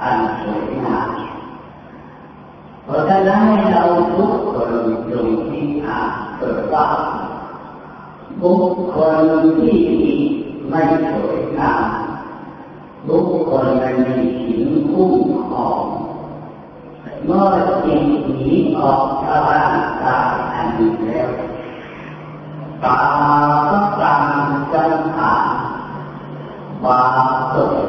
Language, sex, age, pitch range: Thai, female, 40-59, 130-170 Hz